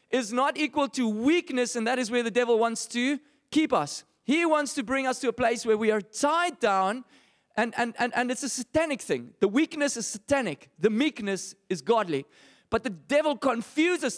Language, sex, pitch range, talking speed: English, male, 200-275 Hz, 205 wpm